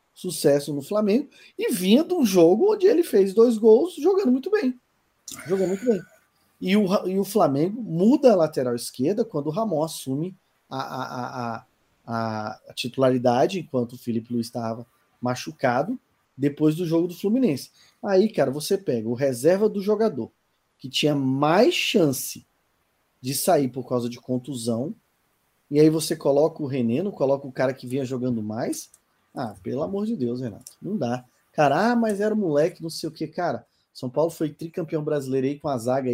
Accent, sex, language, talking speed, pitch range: Brazilian, male, Portuguese, 175 wpm, 125-175 Hz